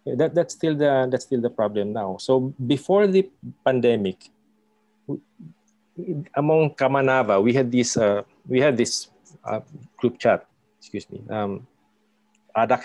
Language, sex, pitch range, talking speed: English, male, 105-140 Hz, 135 wpm